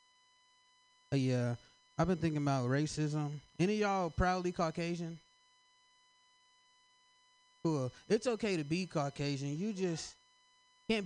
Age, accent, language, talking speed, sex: 20-39, American, English, 110 wpm, male